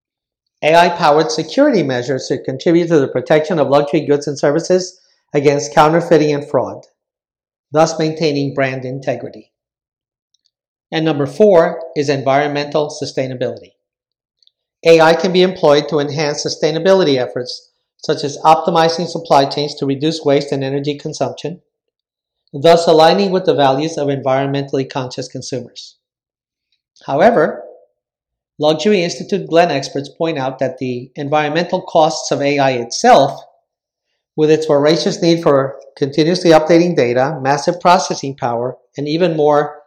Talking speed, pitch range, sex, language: 125 wpm, 140-170 Hz, male, English